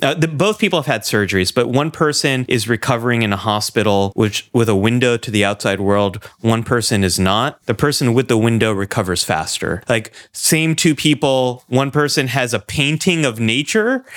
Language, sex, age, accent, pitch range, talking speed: English, male, 30-49, American, 110-150 Hz, 185 wpm